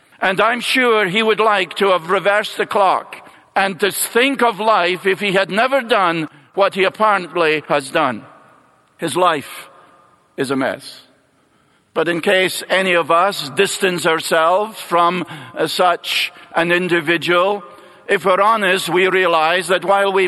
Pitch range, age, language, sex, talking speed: 165-200 Hz, 50-69, English, male, 150 wpm